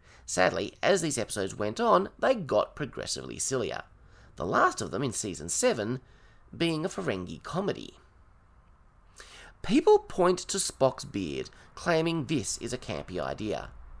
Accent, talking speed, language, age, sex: Australian, 135 wpm, English, 30-49, male